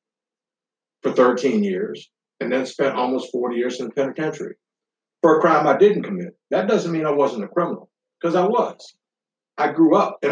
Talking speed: 185 wpm